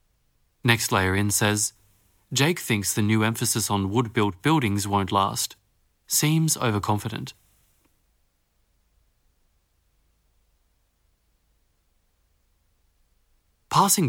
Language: English